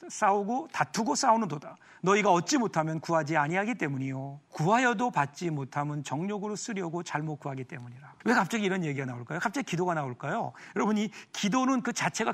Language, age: Korean, 40-59